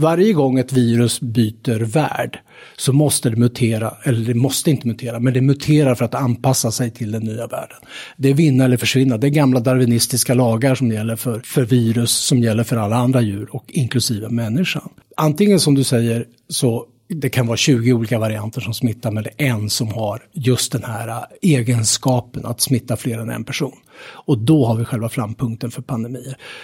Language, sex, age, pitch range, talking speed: Swedish, male, 60-79, 115-140 Hz, 195 wpm